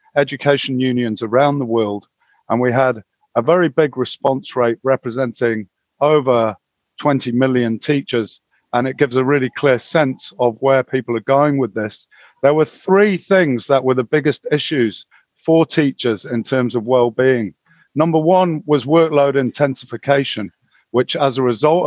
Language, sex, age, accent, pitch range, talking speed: English, male, 50-69, British, 120-145 Hz, 155 wpm